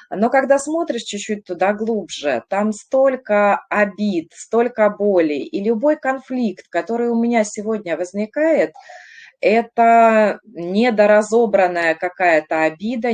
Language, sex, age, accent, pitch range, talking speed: Russian, female, 20-39, native, 165-220 Hz, 105 wpm